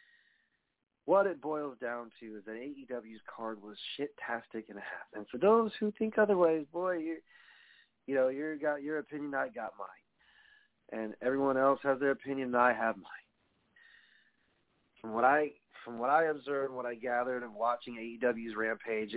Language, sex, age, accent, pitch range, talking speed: English, male, 40-59, American, 120-165 Hz, 175 wpm